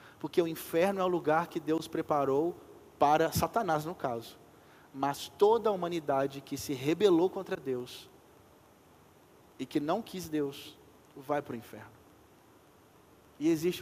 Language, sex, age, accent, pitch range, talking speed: Portuguese, male, 20-39, Brazilian, 145-185 Hz, 145 wpm